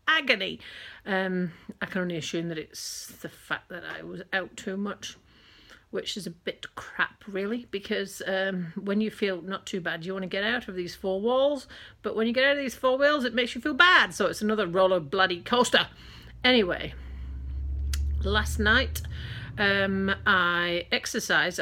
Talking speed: 180 wpm